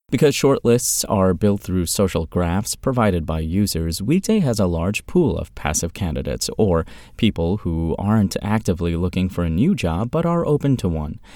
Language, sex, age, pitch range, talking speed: English, male, 30-49, 85-115 Hz, 175 wpm